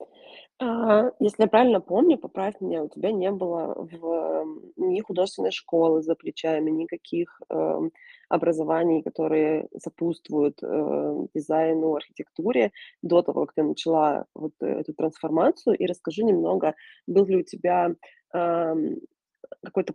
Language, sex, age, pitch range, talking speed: Russian, female, 20-39, 165-195 Hz, 125 wpm